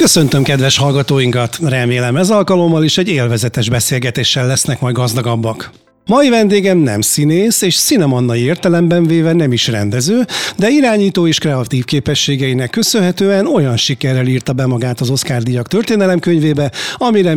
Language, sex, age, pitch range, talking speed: Hungarian, male, 60-79, 125-185 Hz, 140 wpm